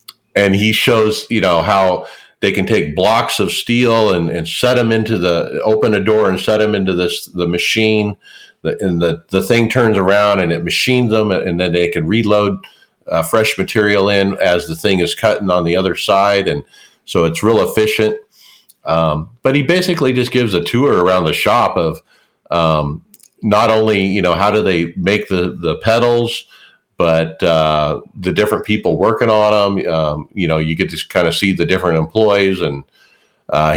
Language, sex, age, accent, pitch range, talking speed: English, male, 50-69, American, 85-110 Hz, 190 wpm